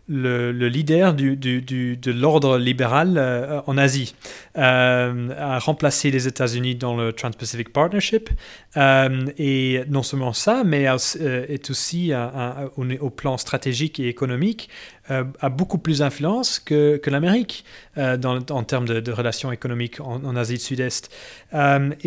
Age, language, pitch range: 30-49, French, 130-155 Hz